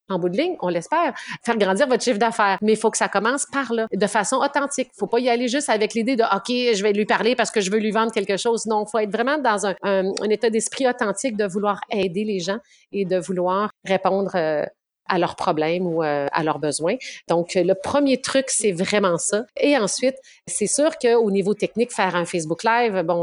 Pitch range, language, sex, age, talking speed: 195-245 Hz, French, female, 40-59, 240 wpm